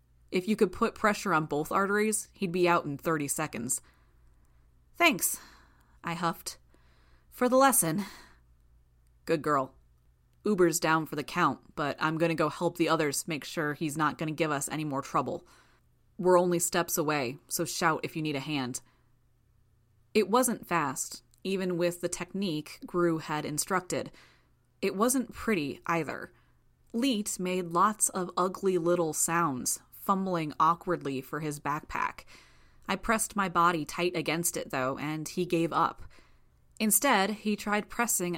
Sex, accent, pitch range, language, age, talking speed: female, American, 145-185 Hz, English, 30-49, 150 wpm